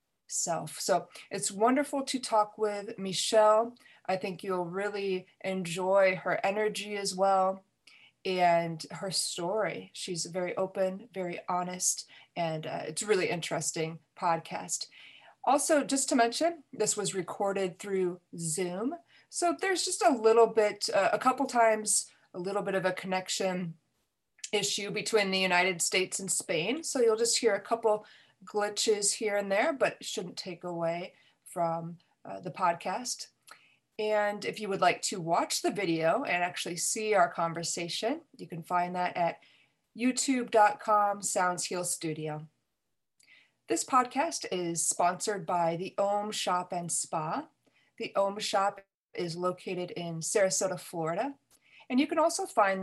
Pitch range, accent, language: 180-220 Hz, American, English